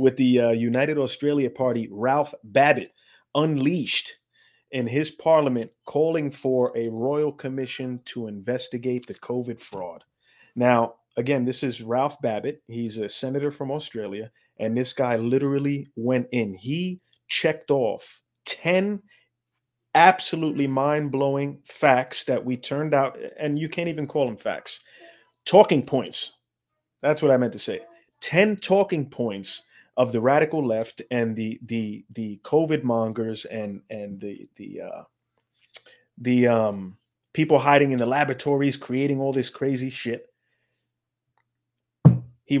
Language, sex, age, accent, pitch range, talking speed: English, male, 30-49, American, 115-140 Hz, 135 wpm